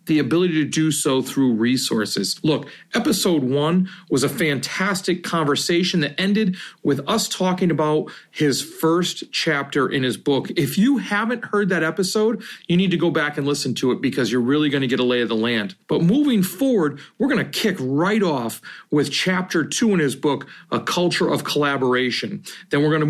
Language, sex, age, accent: English, male, 40-59, American